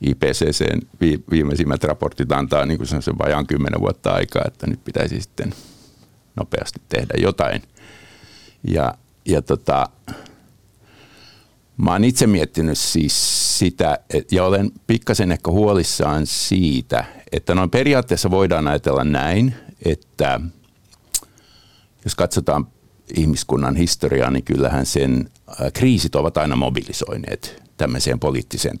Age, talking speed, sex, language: 50-69, 110 wpm, male, Finnish